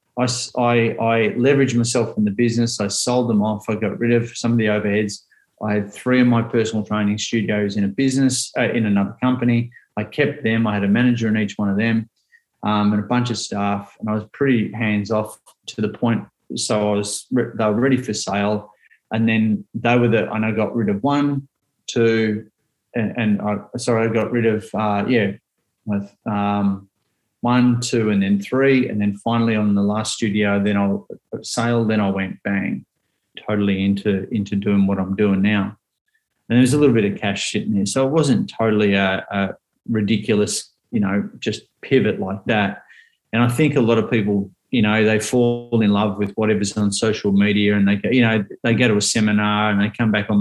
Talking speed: 210 wpm